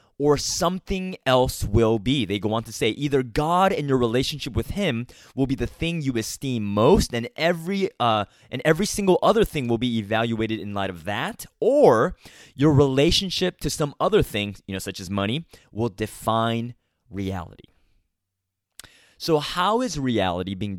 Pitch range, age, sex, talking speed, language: 110-150 Hz, 20-39, male, 170 wpm, English